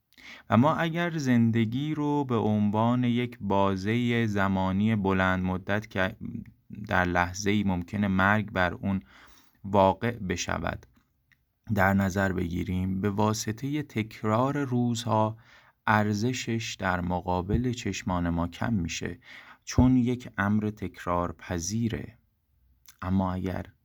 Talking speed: 105 wpm